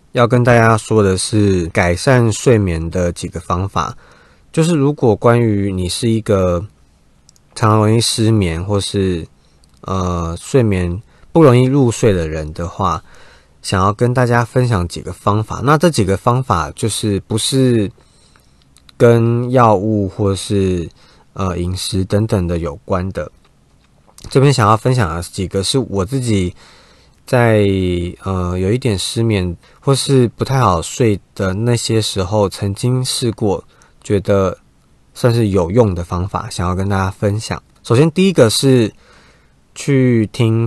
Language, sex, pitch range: Chinese, male, 90-115 Hz